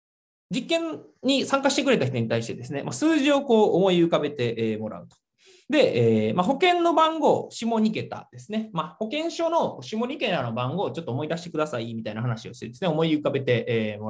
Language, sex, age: Japanese, male, 20-39